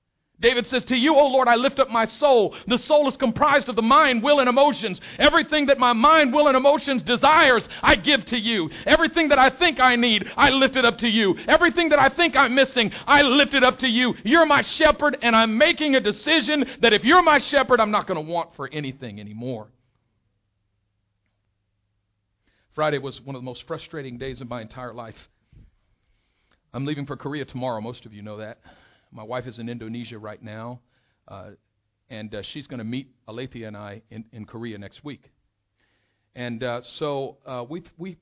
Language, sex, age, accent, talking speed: English, male, 50-69, American, 200 wpm